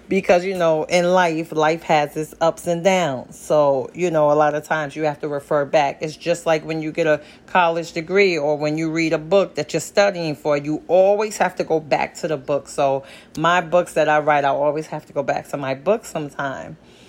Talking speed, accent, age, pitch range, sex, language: 235 wpm, American, 30-49, 150-180 Hz, female, English